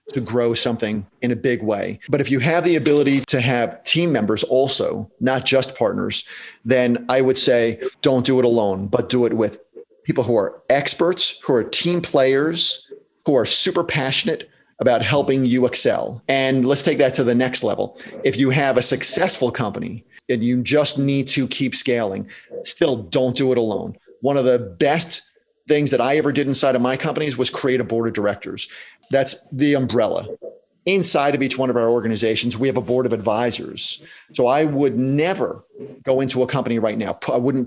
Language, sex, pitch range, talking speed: English, male, 120-145 Hz, 195 wpm